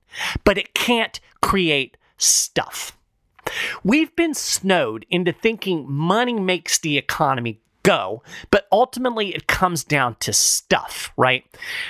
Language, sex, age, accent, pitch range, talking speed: English, male, 30-49, American, 150-215 Hz, 115 wpm